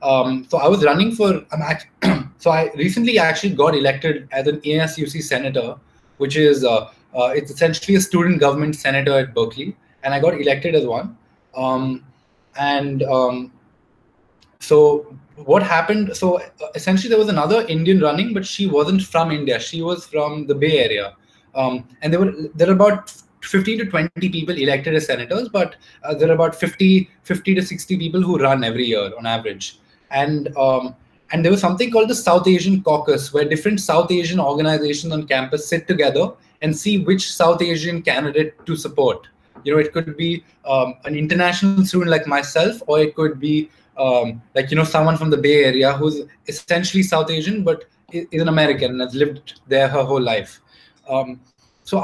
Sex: male